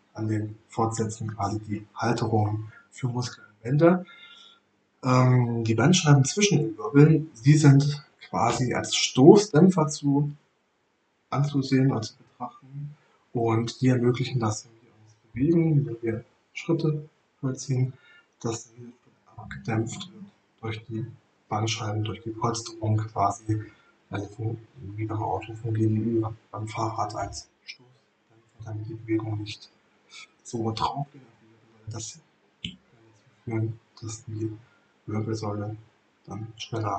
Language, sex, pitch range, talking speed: German, male, 110-140 Hz, 100 wpm